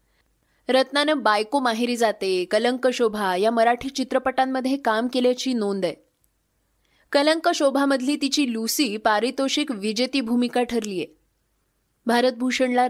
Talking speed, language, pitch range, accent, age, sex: 100 wpm, Marathi, 225-295 Hz, native, 20-39, female